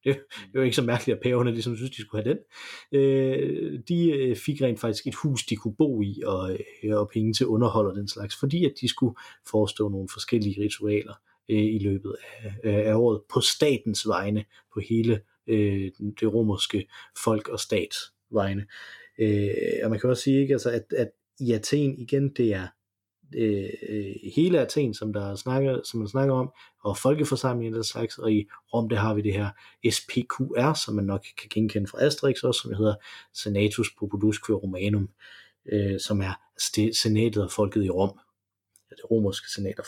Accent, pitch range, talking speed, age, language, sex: native, 105-130 Hz, 175 wpm, 30-49, Danish, male